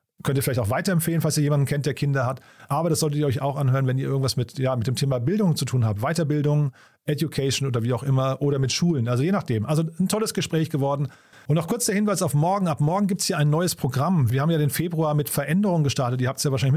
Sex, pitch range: male, 130-160 Hz